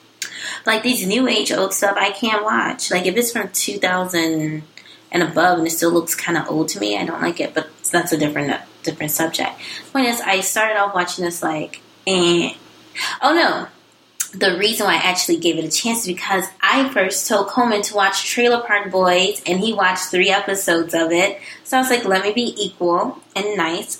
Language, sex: English, female